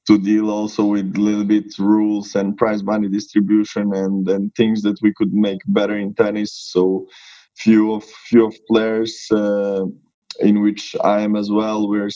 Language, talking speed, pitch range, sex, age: English, 175 wpm, 100-110 Hz, male, 20-39